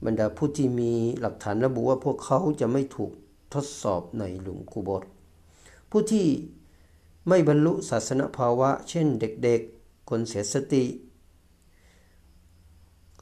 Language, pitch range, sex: Thai, 85-135 Hz, male